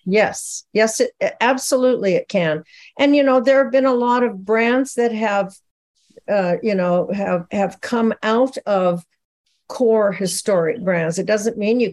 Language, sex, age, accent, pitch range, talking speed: English, female, 50-69, American, 190-235 Hz, 165 wpm